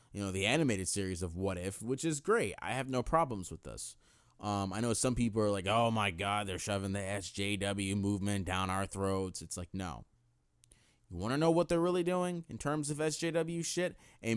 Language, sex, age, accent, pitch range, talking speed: English, male, 30-49, American, 100-165 Hz, 215 wpm